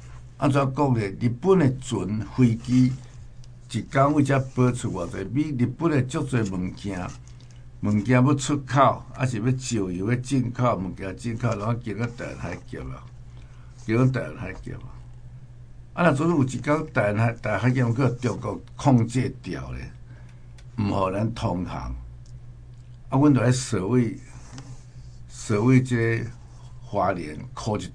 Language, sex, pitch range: Chinese, male, 110-125 Hz